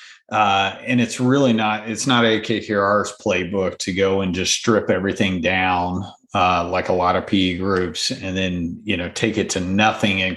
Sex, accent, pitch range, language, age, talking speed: male, American, 95-115 Hz, English, 40-59, 180 wpm